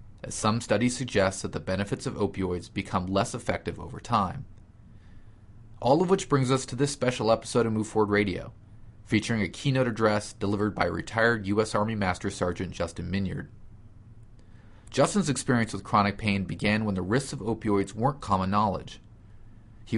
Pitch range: 100-115 Hz